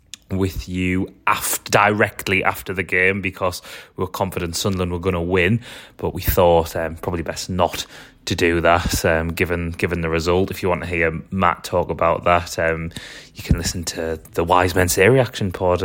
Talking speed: 190 wpm